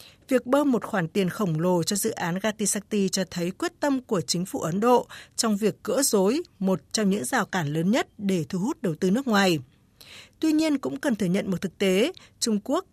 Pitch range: 185-240 Hz